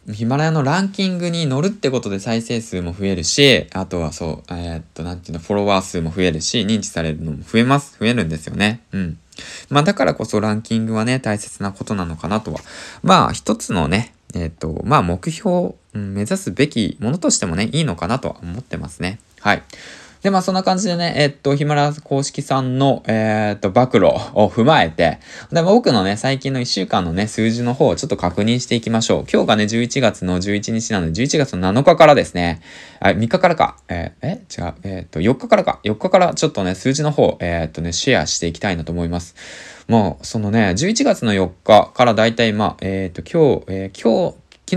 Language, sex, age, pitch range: Japanese, male, 20-39, 90-135 Hz